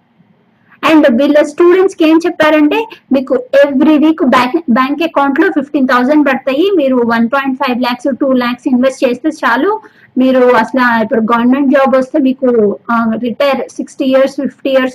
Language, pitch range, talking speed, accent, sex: Telugu, 245-295 Hz, 150 wpm, native, female